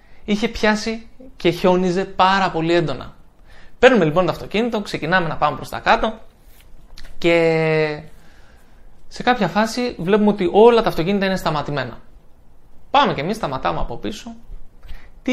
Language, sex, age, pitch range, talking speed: Greek, male, 20-39, 155-210 Hz, 135 wpm